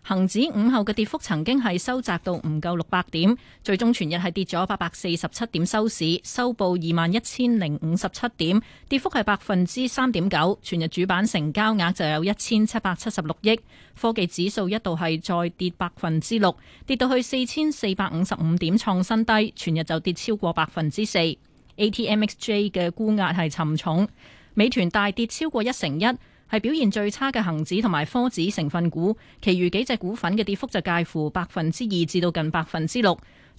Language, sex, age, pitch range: Chinese, female, 30-49, 170-225 Hz